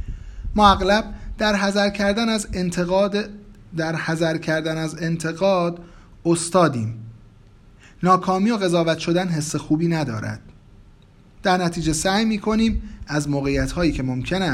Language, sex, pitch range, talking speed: Persian, male, 120-190 Hz, 120 wpm